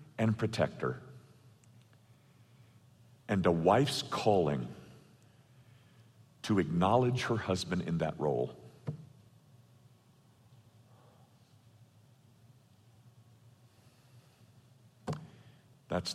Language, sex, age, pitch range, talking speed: English, male, 50-69, 95-125 Hz, 50 wpm